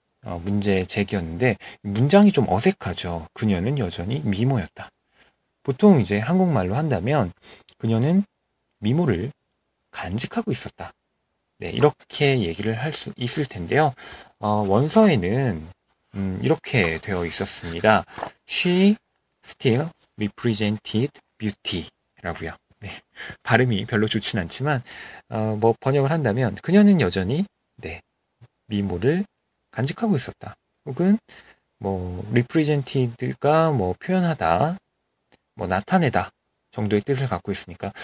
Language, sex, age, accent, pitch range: Korean, male, 40-59, native, 100-150 Hz